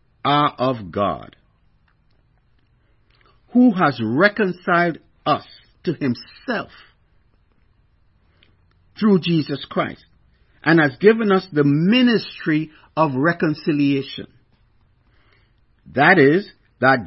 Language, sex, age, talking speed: English, male, 60-79, 80 wpm